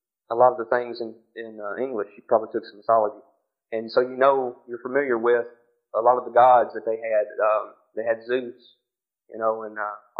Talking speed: 220 wpm